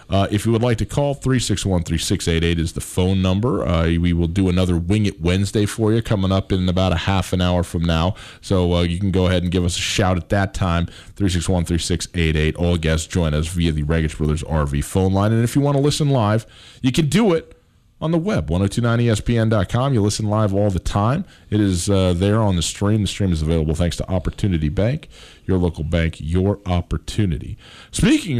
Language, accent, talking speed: English, American, 215 wpm